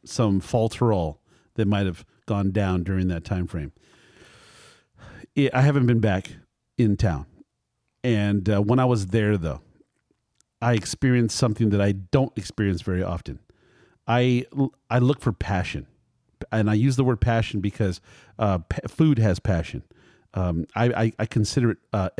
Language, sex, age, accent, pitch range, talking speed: English, male, 40-59, American, 105-130 Hz, 155 wpm